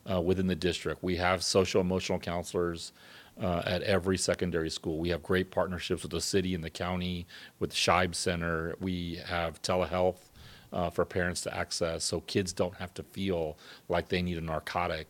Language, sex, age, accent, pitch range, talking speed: English, male, 40-59, American, 85-95 Hz, 185 wpm